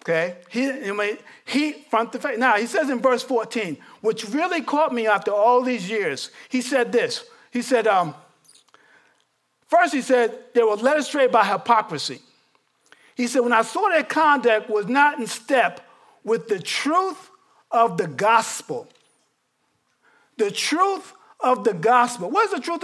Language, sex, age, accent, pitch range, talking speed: English, male, 50-69, American, 225-310 Hz, 160 wpm